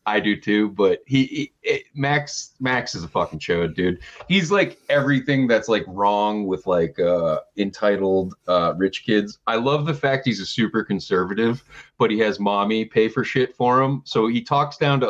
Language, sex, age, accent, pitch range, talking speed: English, male, 30-49, American, 105-140 Hz, 195 wpm